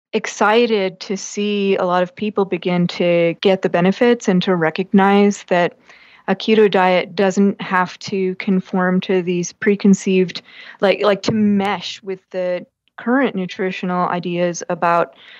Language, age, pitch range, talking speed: English, 30-49, 180-205 Hz, 140 wpm